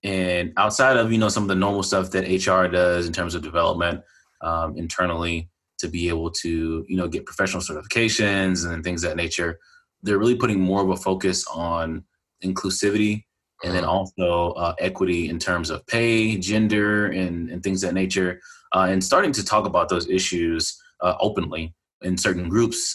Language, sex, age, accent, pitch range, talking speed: English, male, 20-39, American, 85-100 Hz, 185 wpm